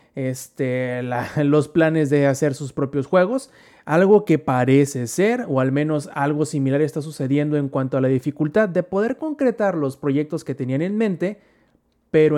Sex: male